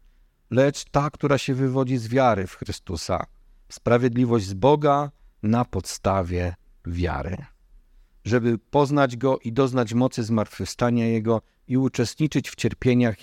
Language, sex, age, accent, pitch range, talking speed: Polish, male, 50-69, native, 90-140 Hz, 125 wpm